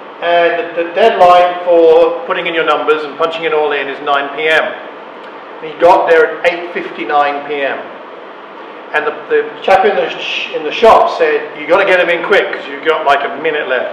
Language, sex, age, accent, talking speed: English, male, 50-69, British, 205 wpm